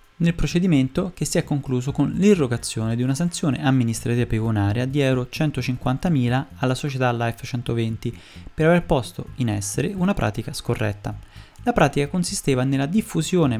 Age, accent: 20-39, native